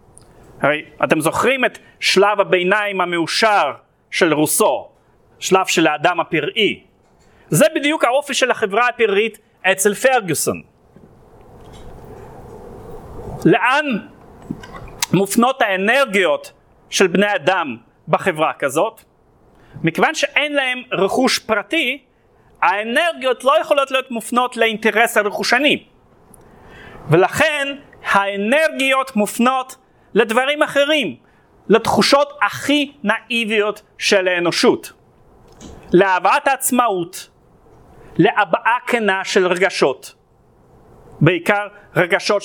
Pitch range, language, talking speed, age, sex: 190-265 Hz, Hebrew, 85 wpm, 40-59, male